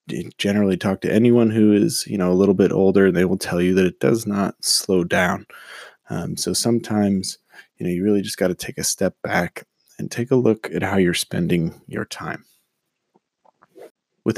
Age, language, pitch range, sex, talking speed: 20-39, English, 90-105 Hz, male, 200 wpm